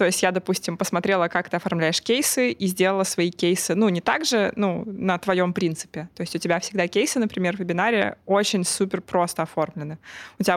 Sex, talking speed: female, 205 wpm